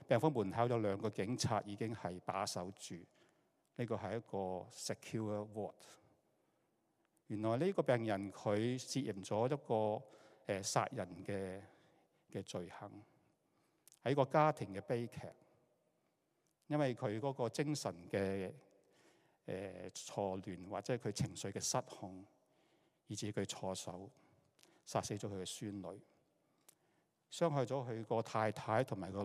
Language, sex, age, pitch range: Chinese, male, 60-79, 95-125 Hz